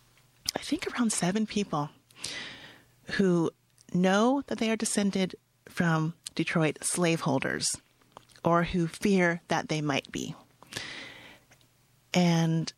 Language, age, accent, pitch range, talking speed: English, 30-49, American, 145-195 Hz, 105 wpm